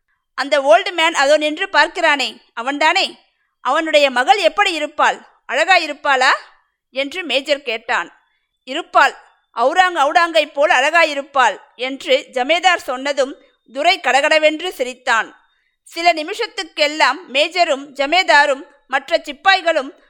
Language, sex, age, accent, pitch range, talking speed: Tamil, female, 50-69, native, 275-340 Hz, 100 wpm